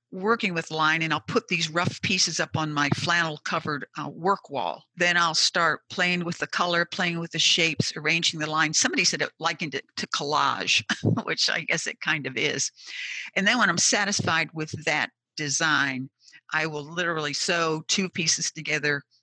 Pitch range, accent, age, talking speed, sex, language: 145-170 Hz, American, 50-69, 185 wpm, female, English